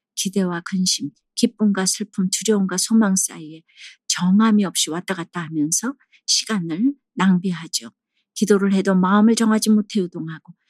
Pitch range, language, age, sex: 175-230 Hz, Korean, 50-69, female